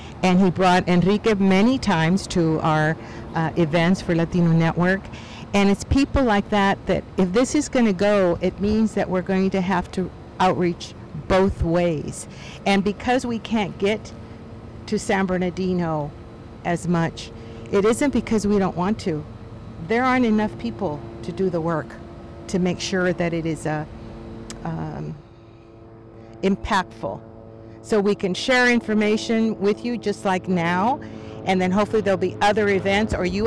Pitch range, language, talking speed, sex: 170-215 Hz, English, 160 wpm, female